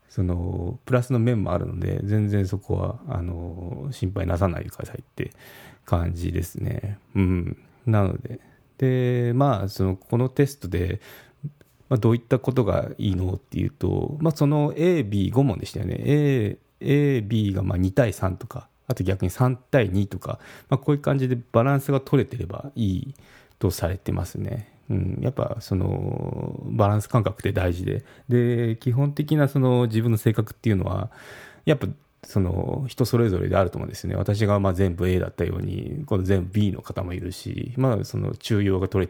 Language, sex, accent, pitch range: Japanese, male, native, 95-130 Hz